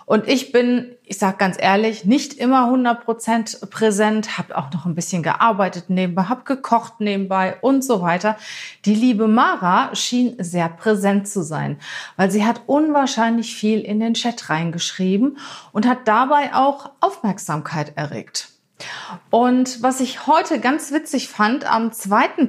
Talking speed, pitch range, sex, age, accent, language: 150 wpm, 190-240 Hz, female, 30-49, German, German